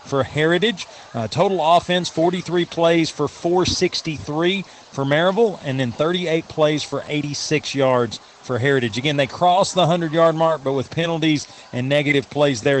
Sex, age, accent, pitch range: male, 40-59, American, 130-160 Hz